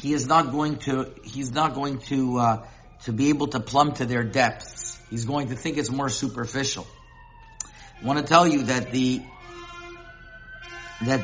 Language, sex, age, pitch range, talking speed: English, male, 50-69, 120-155 Hz, 175 wpm